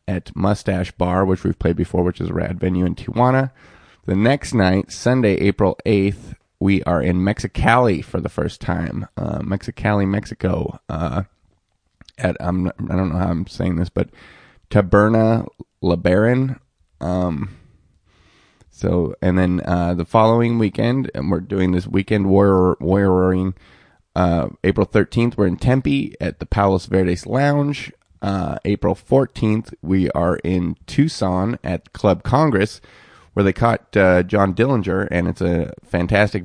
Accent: American